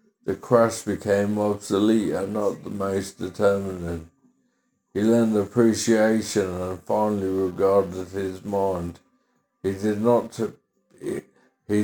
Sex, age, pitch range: male, 60-79, 95-110 Hz